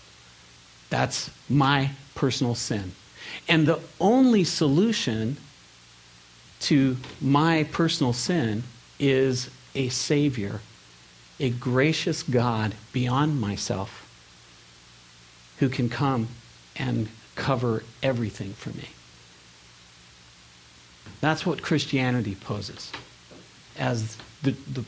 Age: 50-69